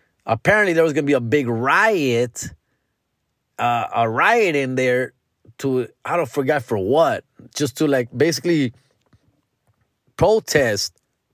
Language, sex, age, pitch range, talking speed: English, male, 30-49, 120-160 Hz, 130 wpm